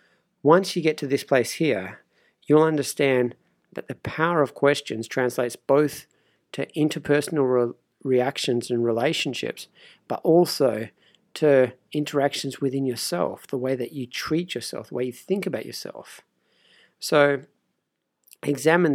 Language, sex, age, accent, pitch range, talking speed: English, male, 40-59, Australian, 130-150 Hz, 130 wpm